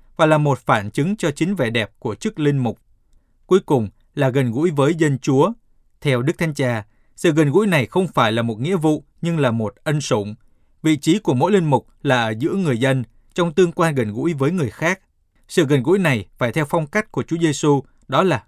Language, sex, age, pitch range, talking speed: Vietnamese, male, 20-39, 125-165 Hz, 235 wpm